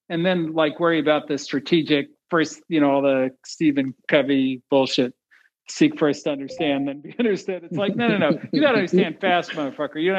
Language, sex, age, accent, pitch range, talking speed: English, male, 50-69, American, 150-195 Hz, 195 wpm